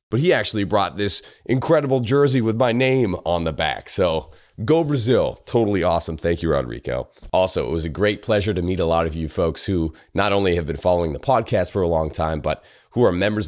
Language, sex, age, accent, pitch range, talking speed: English, male, 30-49, American, 80-100 Hz, 225 wpm